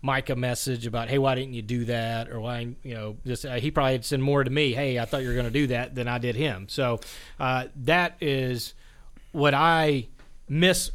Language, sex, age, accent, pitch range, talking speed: English, male, 40-59, American, 120-140 Hz, 230 wpm